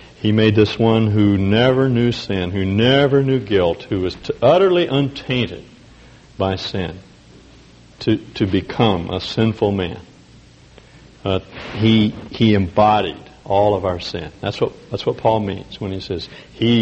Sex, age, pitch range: male, 60-79, 95-140 Hz